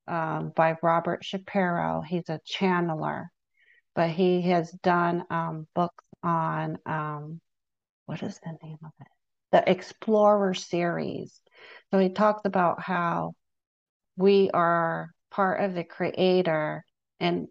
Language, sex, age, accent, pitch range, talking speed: English, female, 40-59, American, 170-195 Hz, 125 wpm